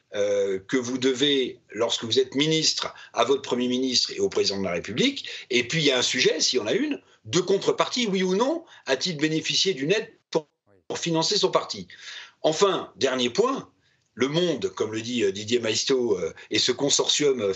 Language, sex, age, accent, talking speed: French, male, 50-69, French, 190 wpm